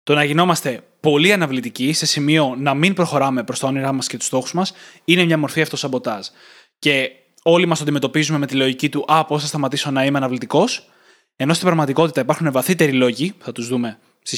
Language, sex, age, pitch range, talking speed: Greek, male, 20-39, 135-170 Hz, 195 wpm